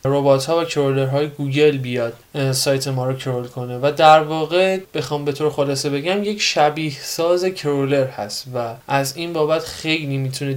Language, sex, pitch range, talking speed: Persian, male, 140-175 Hz, 170 wpm